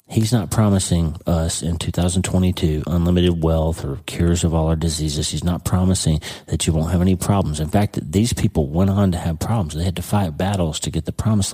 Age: 40-59